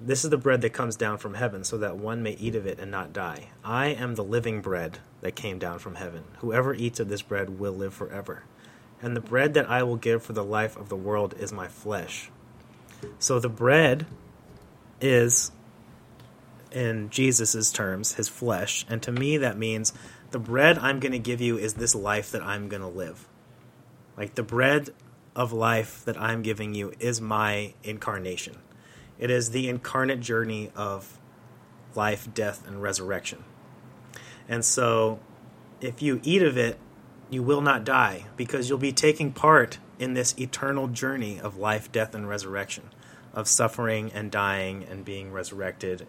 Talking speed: 175 wpm